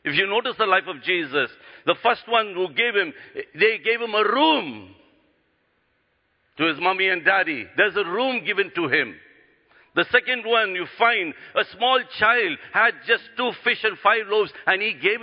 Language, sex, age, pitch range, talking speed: English, male, 60-79, 160-255 Hz, 185 wpm